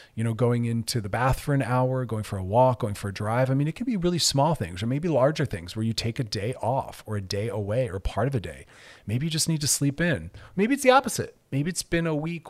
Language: English